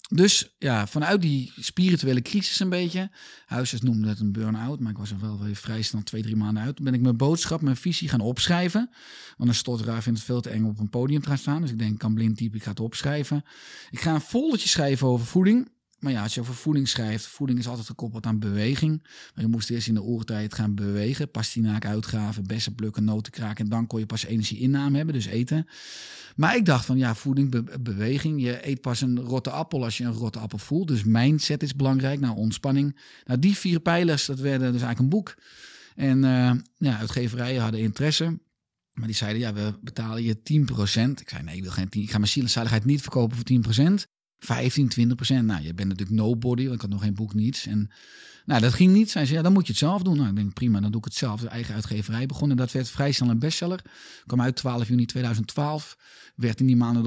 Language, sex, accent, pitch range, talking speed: Dutch, male, Dutch, 110-140 Hz, 240 wpm